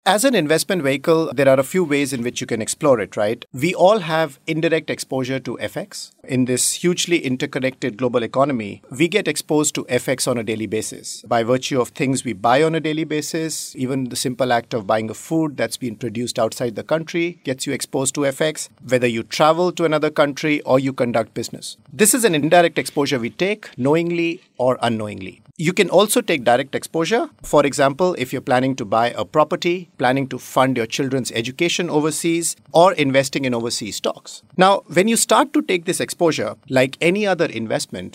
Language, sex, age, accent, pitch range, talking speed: English, male, 50-69, Indian, 125-165 Hz, 200 wpm